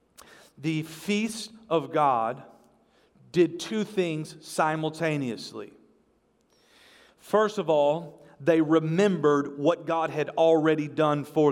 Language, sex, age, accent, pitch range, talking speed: English, male, 40-59, American, 165-215 Hz, 100 wpm